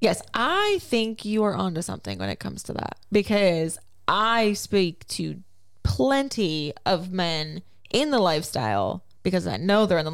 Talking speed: 170 wpm